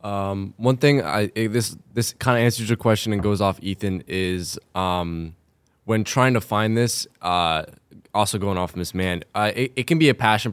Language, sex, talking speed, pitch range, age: English, male, 200 wpm, 95-110 Hz, 10-29